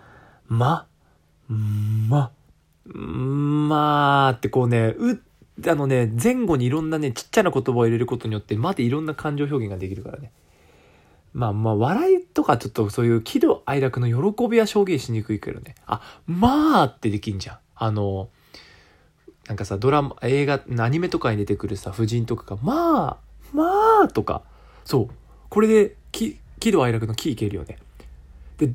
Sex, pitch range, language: male, 100-140 Hz, Japanese